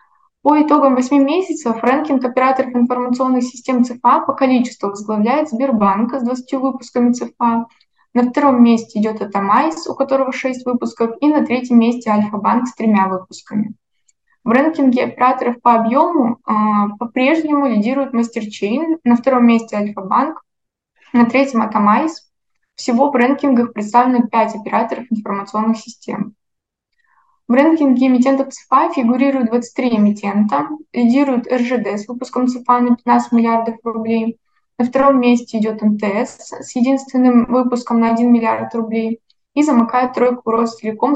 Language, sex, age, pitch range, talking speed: Russian, female, 20-39, 225-265 Hz, 135 wpm